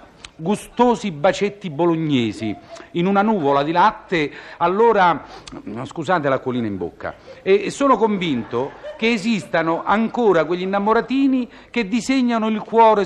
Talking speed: 120 wpm